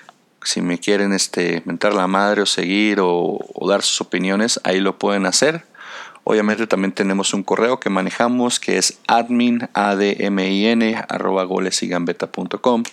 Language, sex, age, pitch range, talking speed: Spanish, male, 40-59, 90-105 Hz, 130 wpm